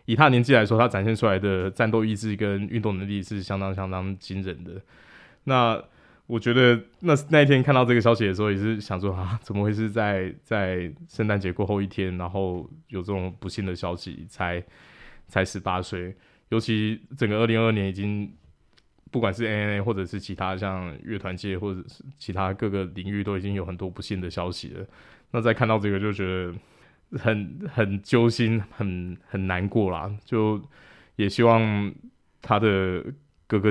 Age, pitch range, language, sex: 20-39, 95-115 Hz, Chinese, male